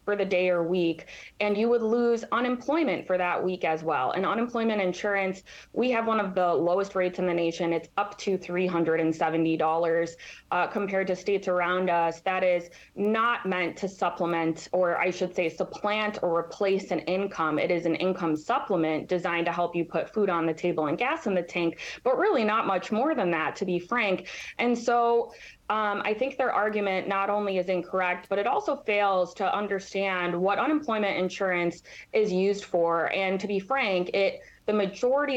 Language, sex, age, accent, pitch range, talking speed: English, female, 20-39, American, 175-210 Hz, 190 wpm